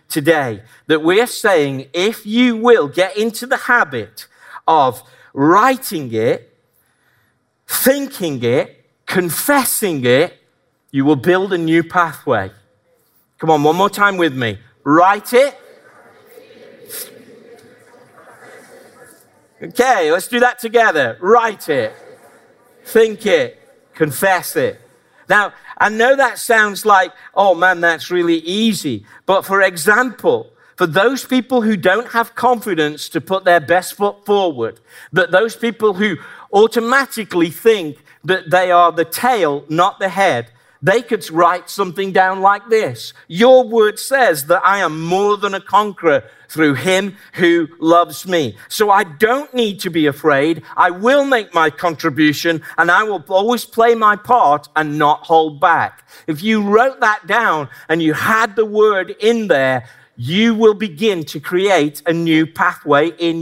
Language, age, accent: English, 50-69, British